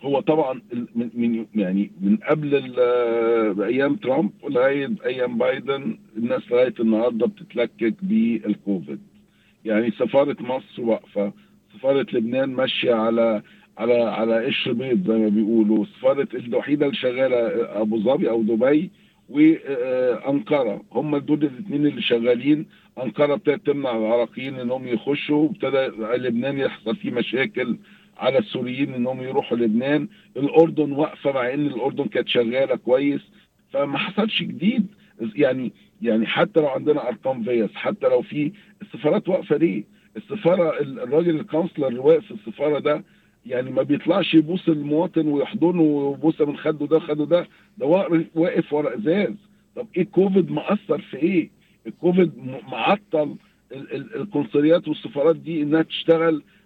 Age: 50-69